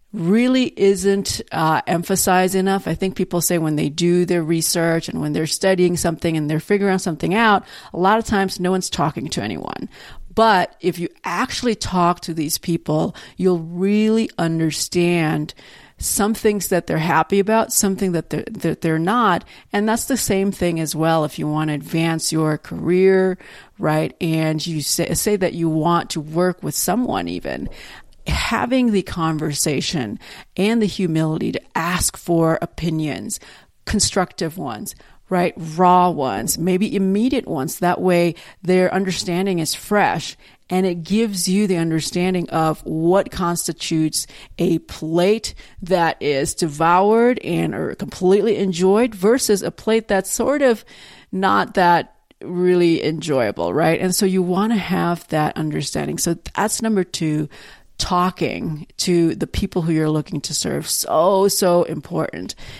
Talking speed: 155 wpm